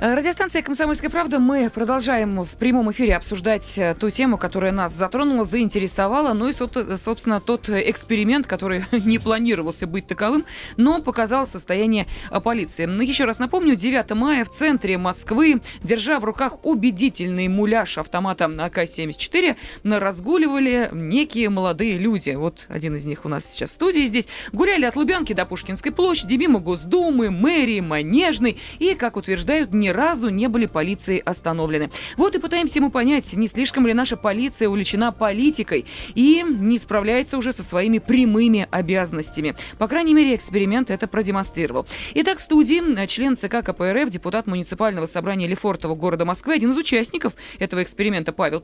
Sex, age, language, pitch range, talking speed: female, 20-39, Russian, 190-275 Hz, 150 wpm